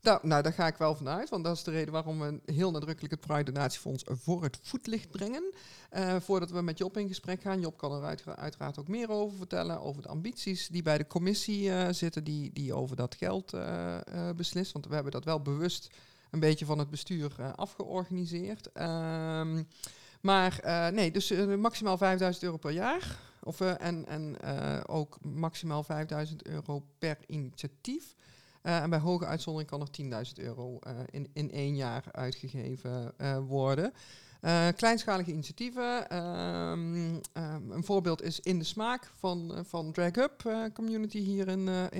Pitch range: 150-185 Hz